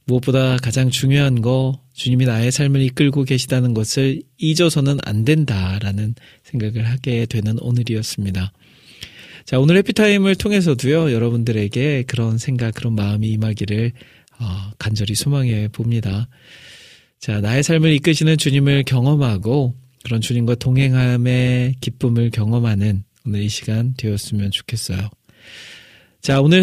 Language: Korean